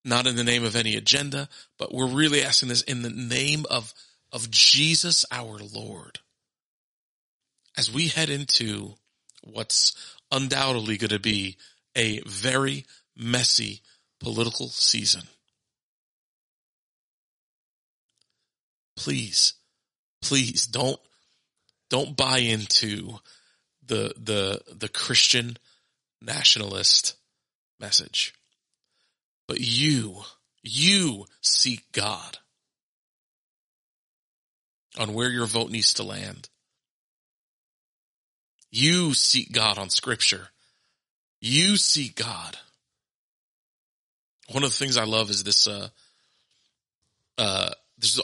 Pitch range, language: 110-135 Hz, English